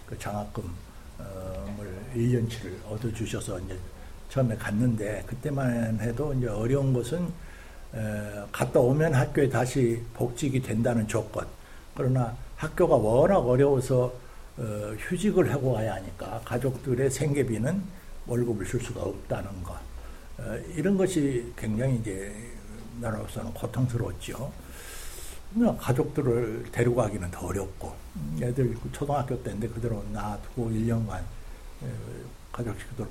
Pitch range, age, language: 105-135 Hz, 60-79, Korean